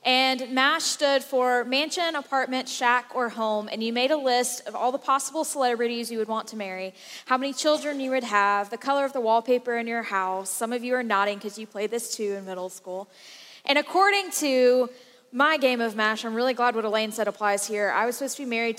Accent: American